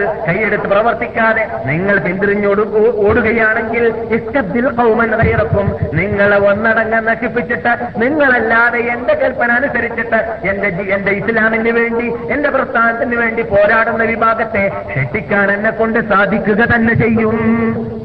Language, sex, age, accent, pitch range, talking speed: Malayalam, male, 50-69, native, 135-225 Hz, 90 wpm